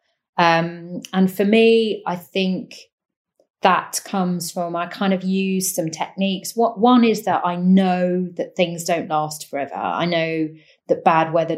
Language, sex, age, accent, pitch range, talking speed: English, female, 30-49, British, 160-195 Hz, 160 wpm